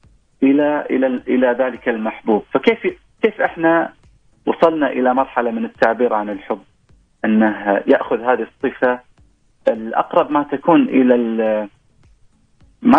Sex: male